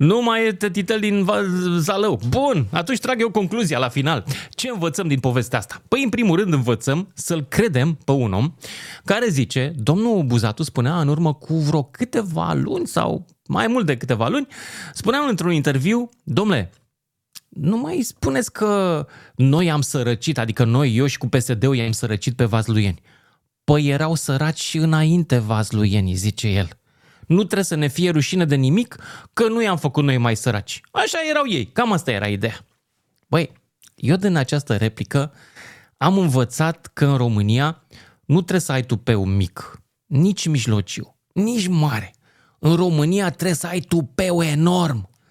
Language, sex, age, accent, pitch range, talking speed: Romanian, male, 30-49, native, 130-185 Hz, 165 wpm